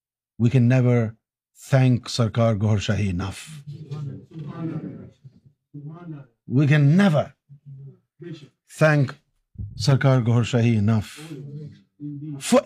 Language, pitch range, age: Urdu, 125-160 Hz, 50-69